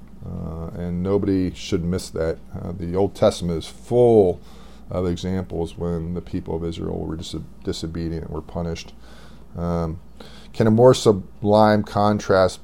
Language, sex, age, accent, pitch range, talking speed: English, male, 40-59, American, 85-100 Hz, 140 wpm